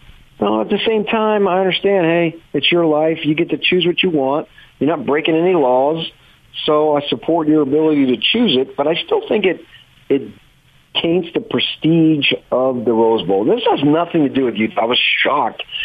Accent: American